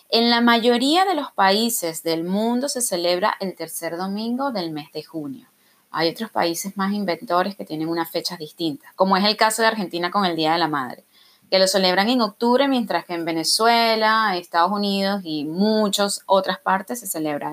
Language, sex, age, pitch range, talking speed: Spanish, female, 20-39, 185-265 Hz, 190 wpm